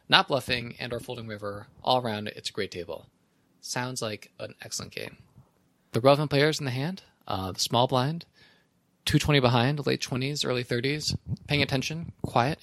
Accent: American